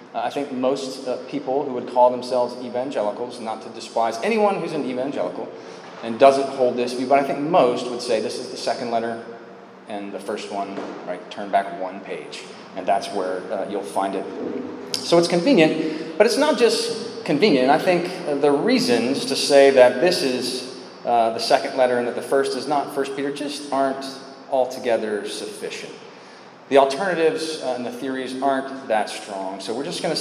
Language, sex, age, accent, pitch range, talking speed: English, male, 30-49, American, 120-160 Hz, 190 wpm